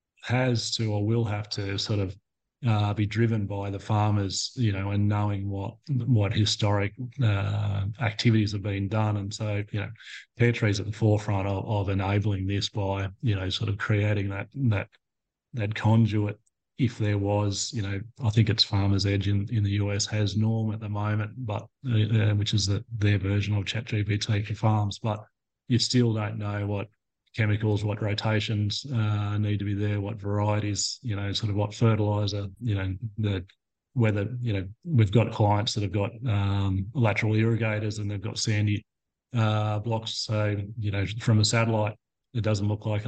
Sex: male